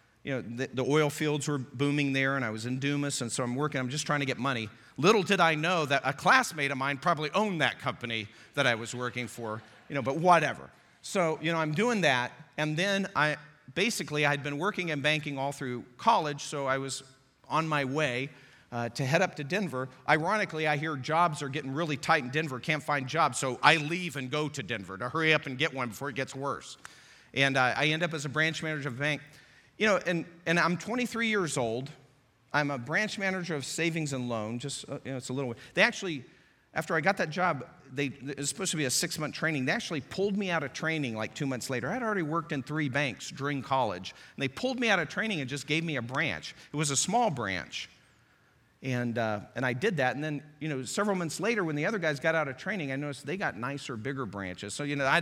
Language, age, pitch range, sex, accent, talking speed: English, 40-59, 130-165 Hz, male, American, 245 wpm